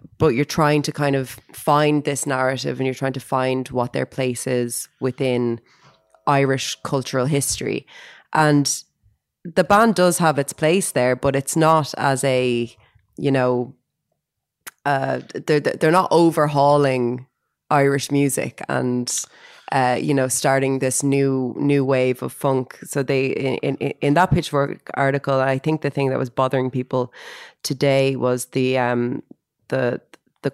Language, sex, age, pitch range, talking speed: English, female, 20-39, 125-145 Hz, 150 wpm